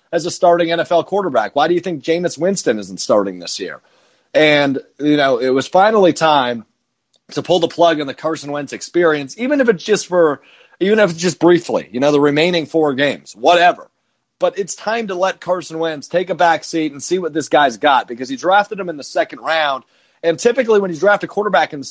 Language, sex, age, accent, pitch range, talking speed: English, male, 30-49, American, 150-185 Hz, 225 wpm